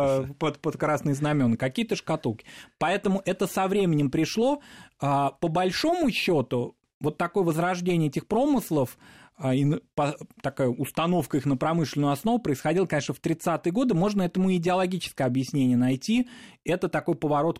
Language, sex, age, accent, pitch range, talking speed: Russian, male, 20-39, native, 130-180 Hz, 135 wpm